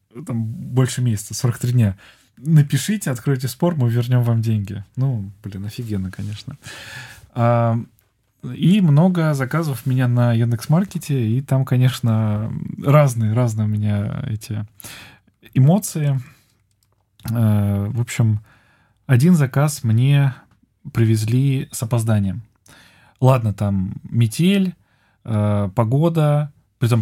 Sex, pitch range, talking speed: male, 105-135 Hz, 100 wpm